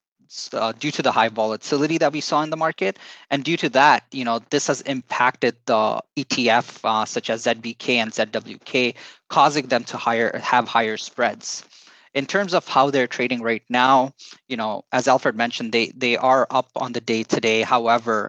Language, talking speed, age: English, 190 wpm, 20-39